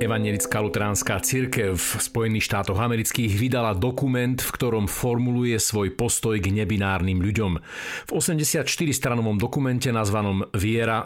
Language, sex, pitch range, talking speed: Slovak, male, 105-140 Hz, 120 wpm